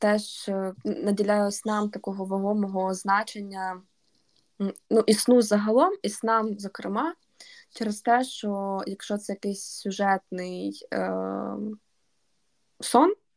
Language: Ukrainian